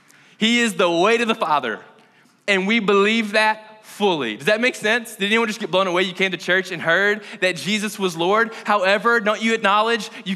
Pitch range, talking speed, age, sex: 165-215 Hz, 215 wpm, 20-39, male